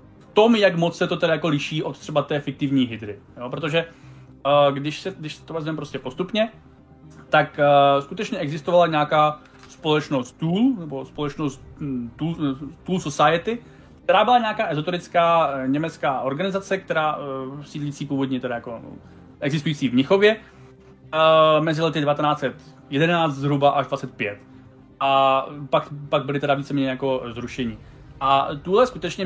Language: Czech